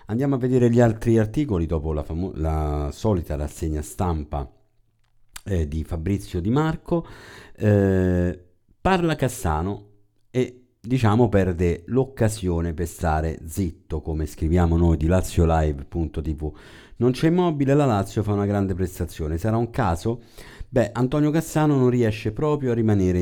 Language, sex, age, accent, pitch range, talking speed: Italian, male, 50-69, native, 85-115 Hz, 140 wpm